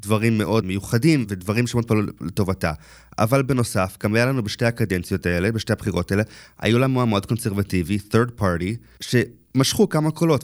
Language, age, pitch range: Hebrew, 30-49, 95-120 Hz